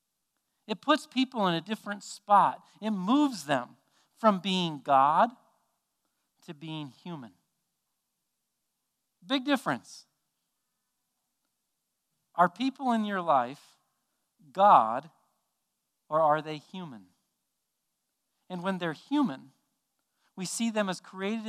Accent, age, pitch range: American, 40-59, 155-215 Hz